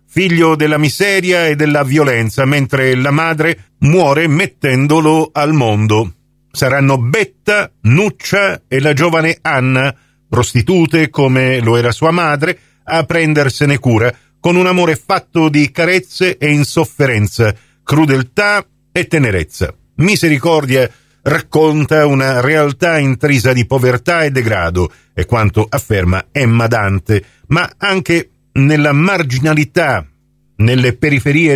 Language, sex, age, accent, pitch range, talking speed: Italian, male, 50-69, native, 130-210 Hz, 115 wpm